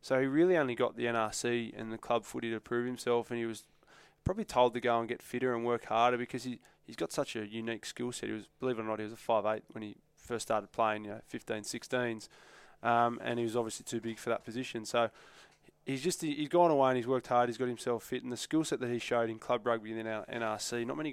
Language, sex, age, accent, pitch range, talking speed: English, male, 20-39, Australian, 115-125 Hz, 275 wpm